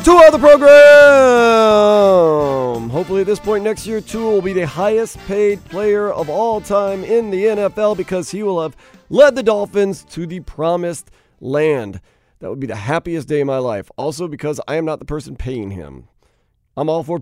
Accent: American